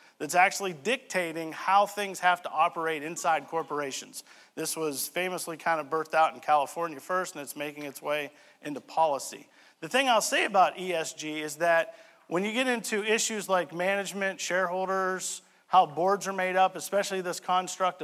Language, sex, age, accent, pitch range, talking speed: English, male, 50-69, American, 150-185 Hz, 170 wpm